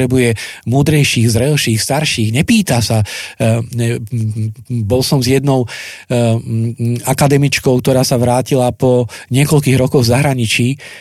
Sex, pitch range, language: male, 115-145 Hz, Slovak